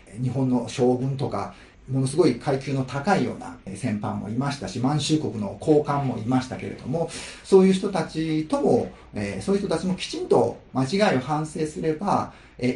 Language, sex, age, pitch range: Japanese, male, 40-59, 120-185 Hz